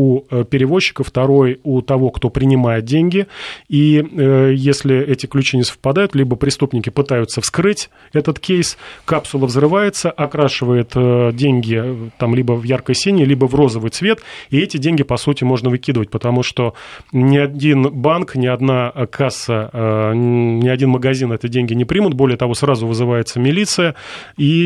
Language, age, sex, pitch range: Russian, 30-49, male, 120-145 Hz